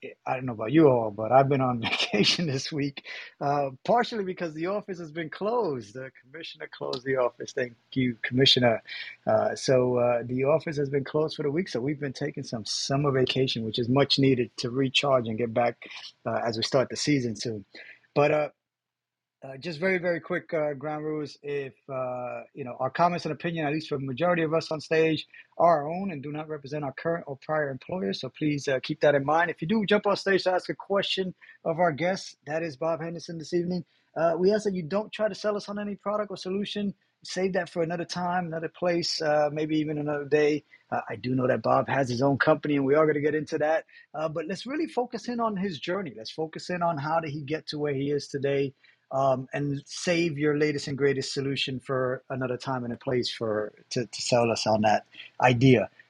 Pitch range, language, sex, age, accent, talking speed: 135-180 Hz, English, male, 30-49, American, 230 wpm